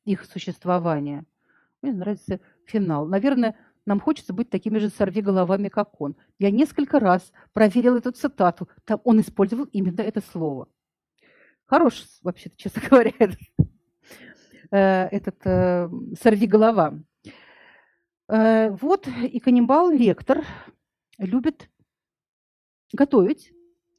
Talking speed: 100 wpm